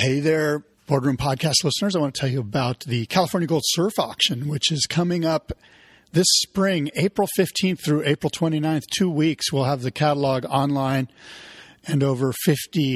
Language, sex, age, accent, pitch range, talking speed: English, male, 40-59, American, 135-165 Hz, 170 wpm